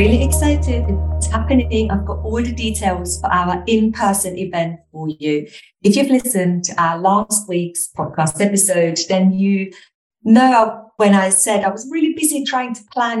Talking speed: 170 wpm